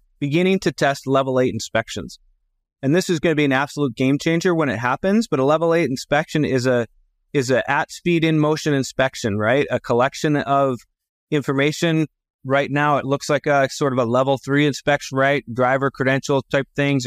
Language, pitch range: English, 115-145 Hz